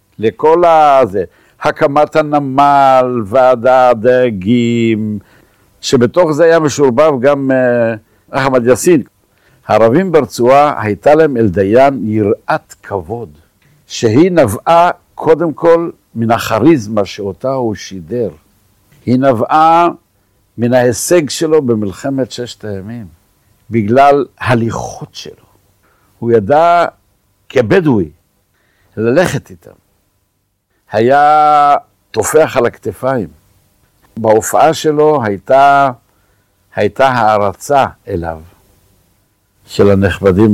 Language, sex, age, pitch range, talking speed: Hebrew, male, 60-79, 100-135 Hz, 85 wpm